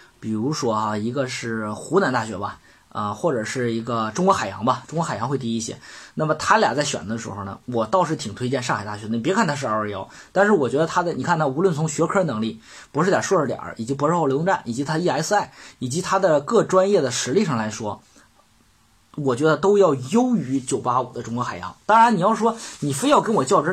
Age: 20-39